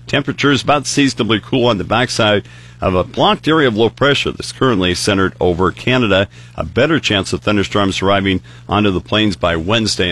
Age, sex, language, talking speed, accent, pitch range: 50-69, male, English, 180 wpm, American, 95-125 Hz